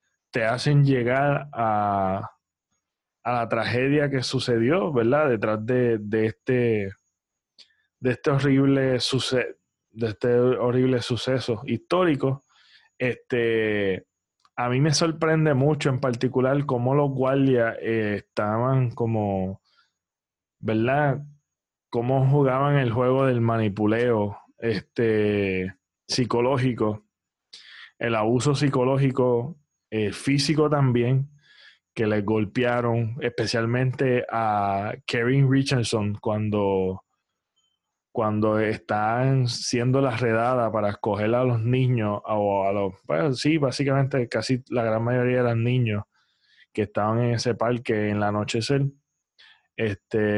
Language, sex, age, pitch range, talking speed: Spanish, male, 20-39, 110-130 Hz, 100 wpm